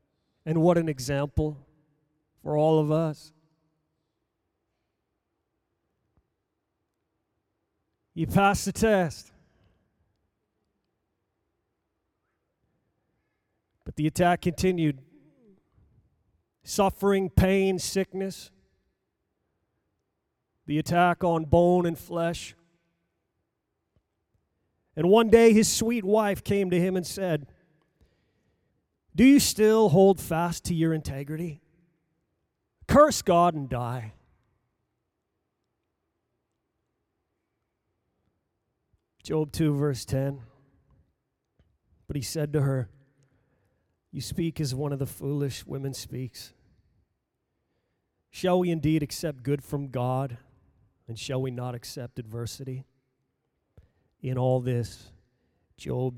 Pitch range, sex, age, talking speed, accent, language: 110-170 Hz, male, 40-59, 90 wpm, American, English